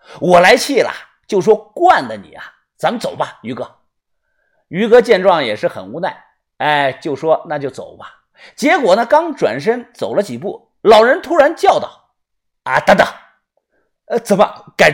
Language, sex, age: Chinese, male, 50-69